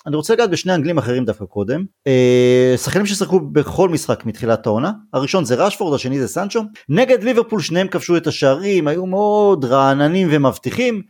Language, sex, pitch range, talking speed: Hebrew, male, 140-225 Hz, 160 wpm